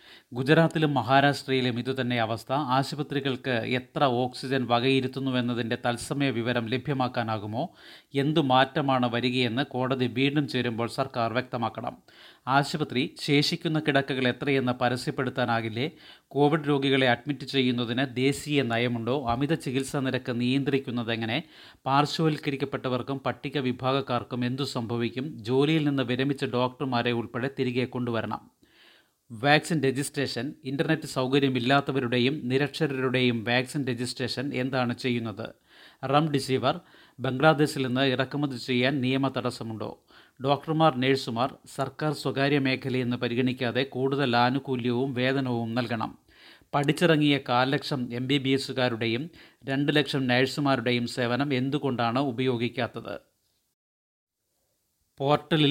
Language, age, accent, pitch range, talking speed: Malayalam, 30-49, native, 125-140 Hz, 85 wpm